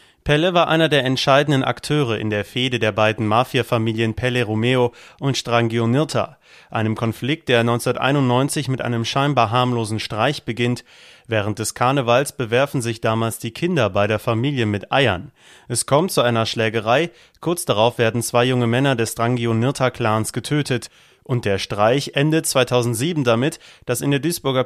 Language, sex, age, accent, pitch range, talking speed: German, male, 30-49, German, 115-135 Hz, 155 wpm